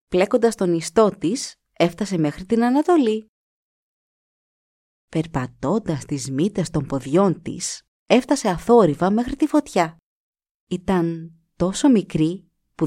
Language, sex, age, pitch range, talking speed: Greek, female, 30-49, 165-245 Hz, 105 wpm